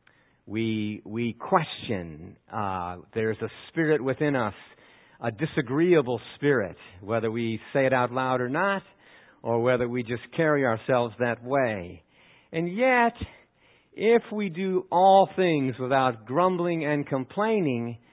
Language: English